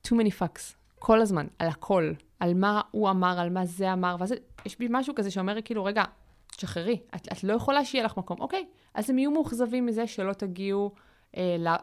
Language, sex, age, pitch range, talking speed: Hebrew, female, 20-39, 170-215 Hz, 210 wpm